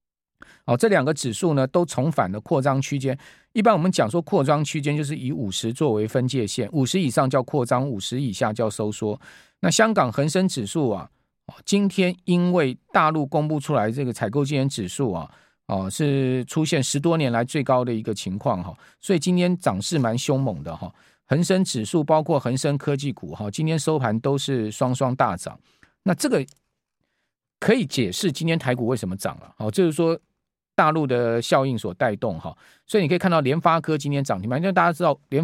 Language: Chinese